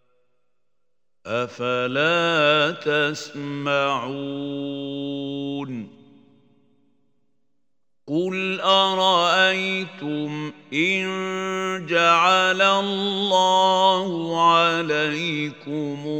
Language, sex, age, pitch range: Arabic, male, 50-69, 125-150 Hz